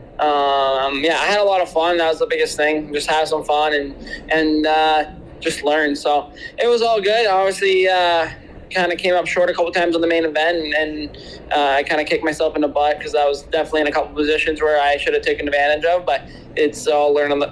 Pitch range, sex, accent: 145-160 Hz, male, American